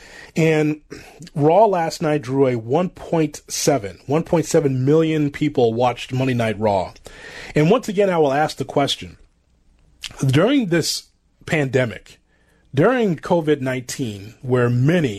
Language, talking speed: English, 115 wpm